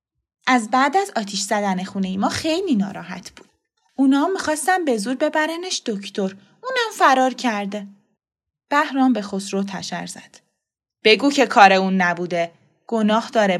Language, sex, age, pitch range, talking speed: Persian, female, 20-39, 195-255 Hz, 140 wpm